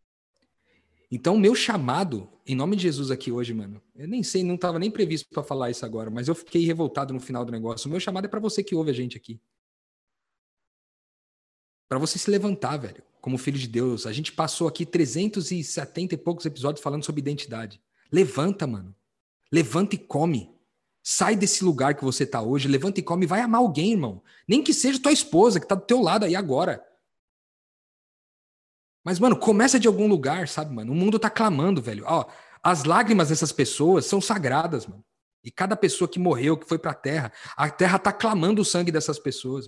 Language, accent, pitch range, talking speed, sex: Portuguese, Brazilian, 125-185 Hz, 200 wpm, male